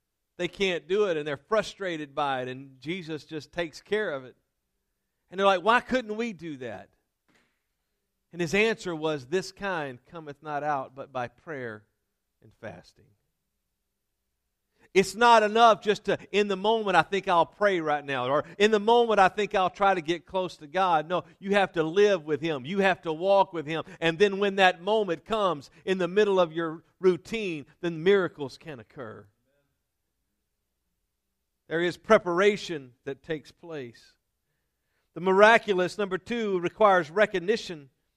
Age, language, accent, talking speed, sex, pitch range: 50-69, English, American, 165 wpm, male, 145-200 Hz